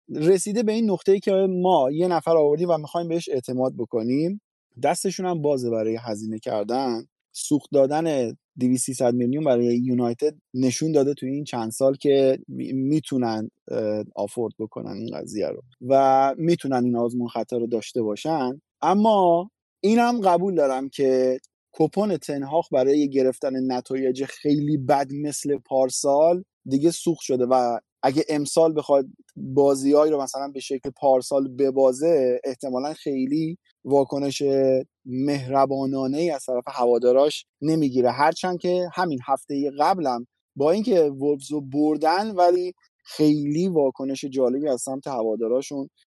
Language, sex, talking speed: Persian, male, 135 wpm